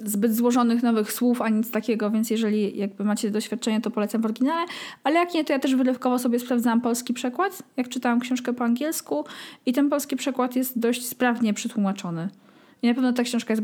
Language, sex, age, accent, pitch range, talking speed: Polish, female, 20-39, native, 210-255 Hz, 200 wpm